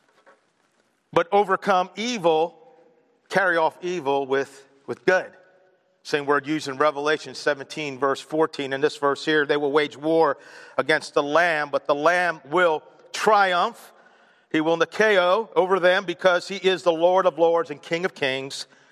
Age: 50-69